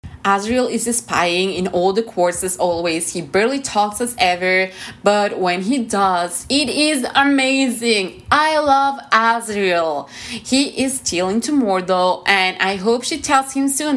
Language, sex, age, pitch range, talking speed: English, female, 20-39, 185-250 Hz, 150 wpm